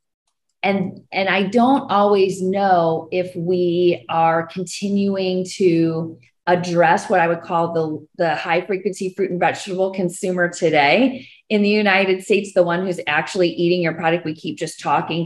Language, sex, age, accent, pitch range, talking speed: English, female, 30-49, American, 155-185 Hz, 155 wpm